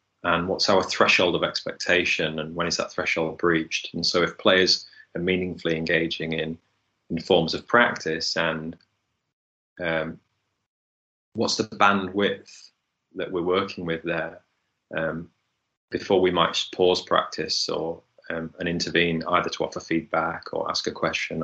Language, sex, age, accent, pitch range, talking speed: English, male, 30-49, British, 80-95 Hz, 145 wpm